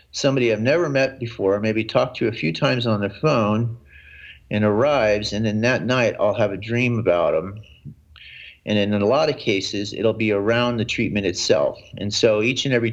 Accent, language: American, English